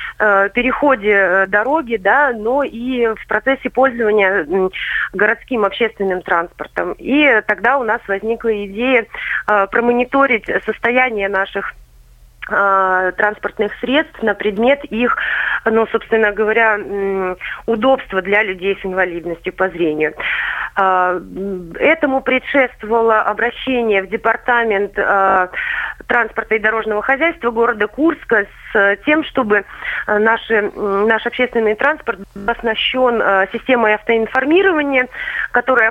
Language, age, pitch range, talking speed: Russian, 30-49, 200-255 Hz, 100 wpm